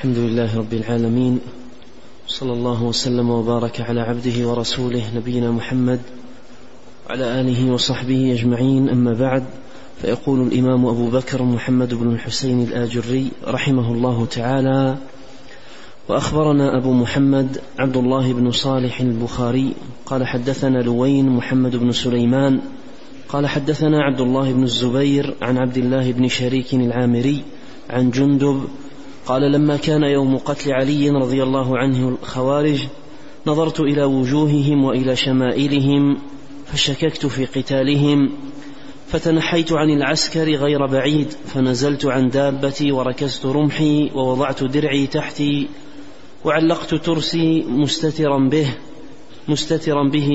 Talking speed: 115 wpm